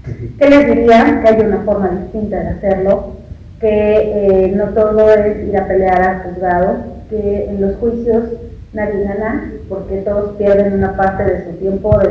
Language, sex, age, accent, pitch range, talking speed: Spanish, female, 30-49, Mexican, 200-240 Hz, 175 wpm